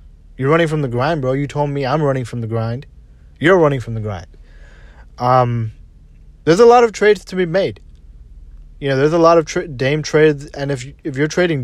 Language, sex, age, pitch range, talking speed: English, male, 20-39, 95-135 Hz, 220 wpm